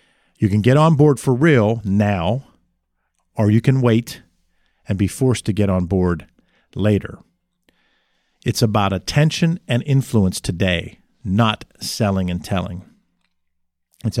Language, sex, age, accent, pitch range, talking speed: English, male, 50-69, American, 90-120 Hz, 130 wpm